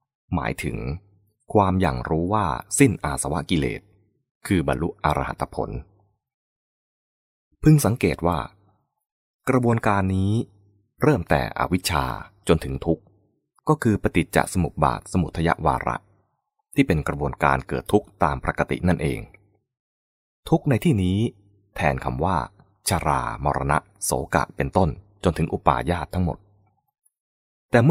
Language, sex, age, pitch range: English, male, 20-39, 75-115 Hz